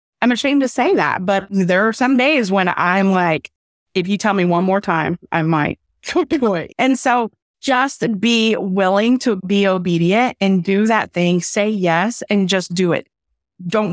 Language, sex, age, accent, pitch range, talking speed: English, female, 30-49, American, 175-230 Hz, 180 wpm